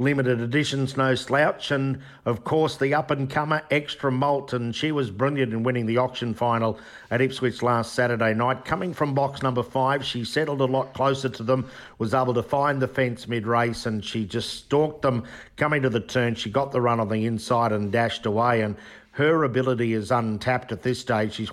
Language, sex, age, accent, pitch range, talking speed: English, male, 50-69, Australian, 115-135 Hz, 200 wpm